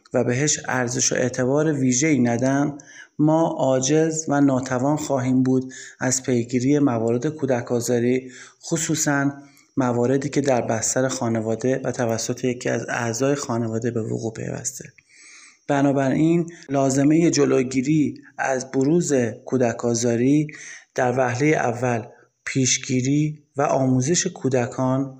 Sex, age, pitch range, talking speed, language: male, 30-49, 125-145 Hz, 110 wpm, Persian